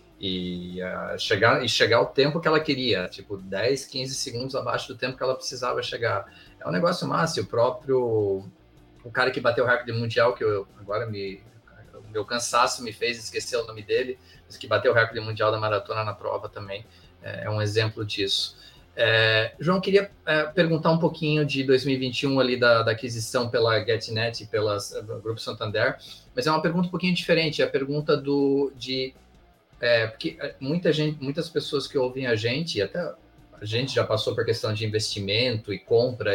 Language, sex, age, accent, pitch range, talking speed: Portuguese, male, 20-39, Brazilian, 115-155 Hz, 190 wpm